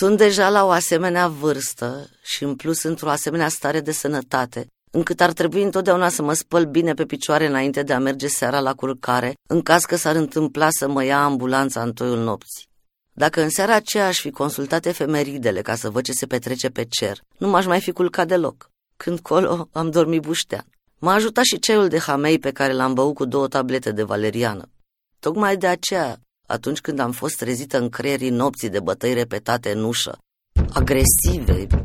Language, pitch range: Romanian, 130-170 Hz